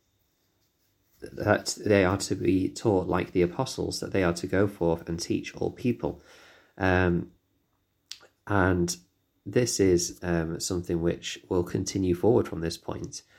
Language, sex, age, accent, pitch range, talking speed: English, male, 30-49, British, 85-100 Hz, 145 wpm